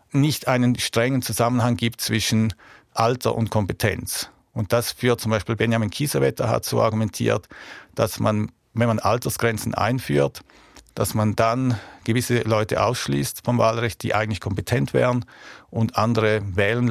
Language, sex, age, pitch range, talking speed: German, male, 50-69, 105-115 Hz, 140 wpm